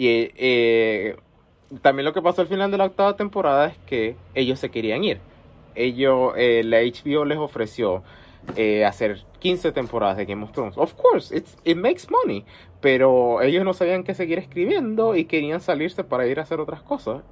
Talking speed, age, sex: 180 wpm, 30-49, male